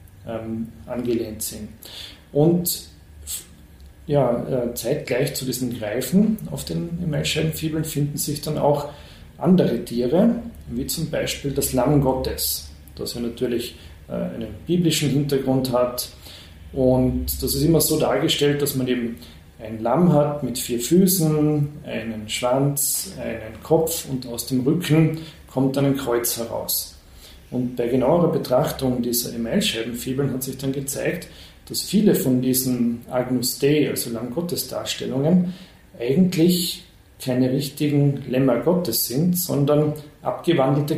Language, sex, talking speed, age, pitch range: German, male, 125 wpm, 40-59, 120-155 Hz